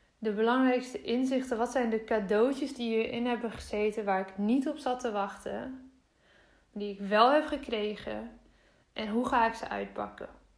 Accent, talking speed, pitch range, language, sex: Dutch, 165 wpm, 220-260 Hz, Dutch, female